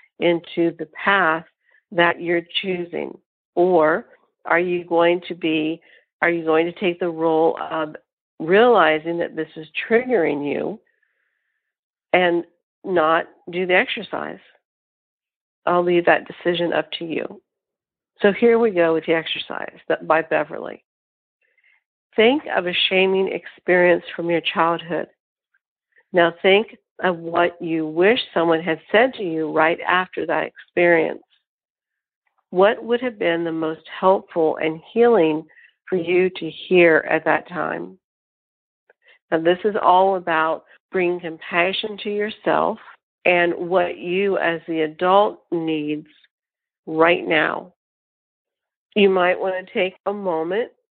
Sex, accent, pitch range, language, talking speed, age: female, American, 165-190 Hz, English, 130 wpm, 60-79